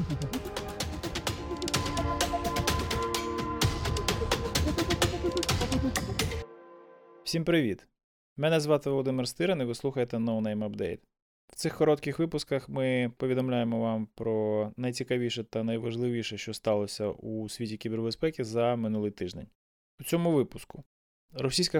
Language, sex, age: Ukrainian, male, 20-39